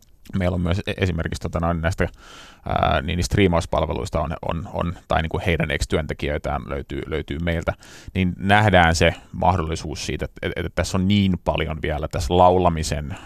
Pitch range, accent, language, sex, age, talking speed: 80-95 Hz, native, Finnish, male, 30-49, 155 wpm